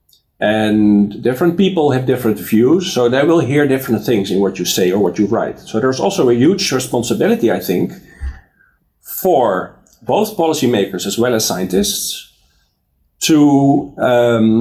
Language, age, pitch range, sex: English, 50-69, 105-155 Hz, male